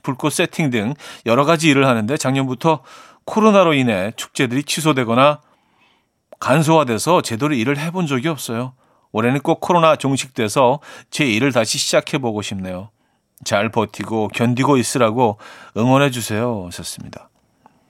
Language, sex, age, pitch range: Korean, male, 40-59, 115-155 Hz